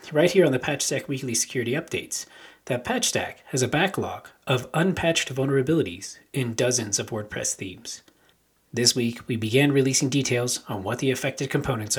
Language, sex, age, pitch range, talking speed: English, male, 40-59, 115-150 Hz, 160 wpm